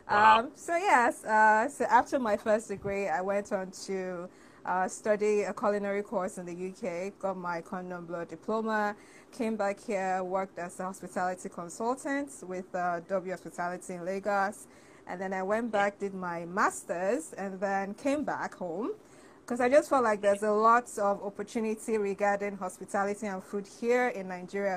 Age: 20-39